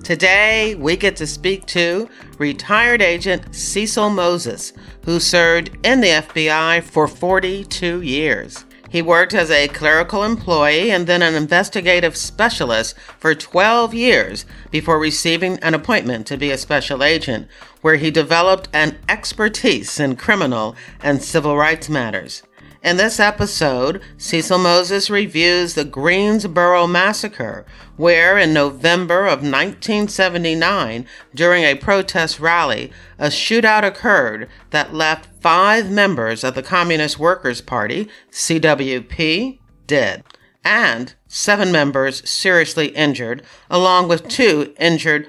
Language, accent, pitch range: English, American, 150-190 Hz